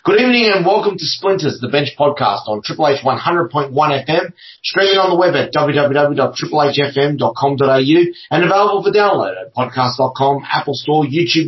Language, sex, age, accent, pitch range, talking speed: English, male, 30-49, Australian, 140-180 Hz, 150 wpm